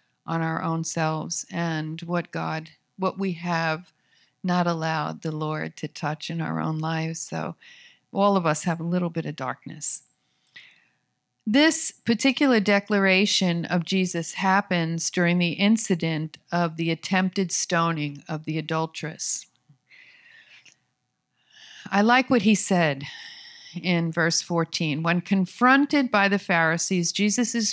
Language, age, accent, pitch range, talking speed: English, 50-69, American, 165-205 Hz, 130 wpm